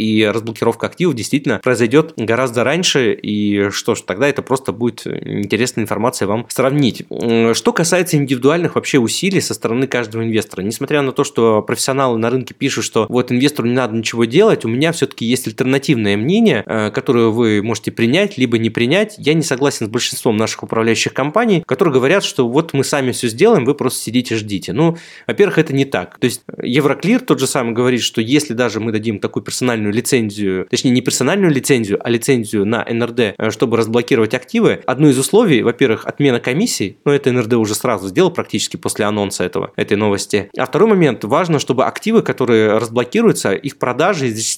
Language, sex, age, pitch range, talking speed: Russian, male, 20-39, 115-145 Hz, 180 wpm